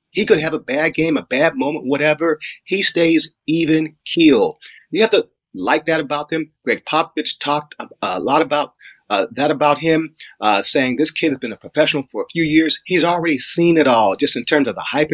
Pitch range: 140-180 Hz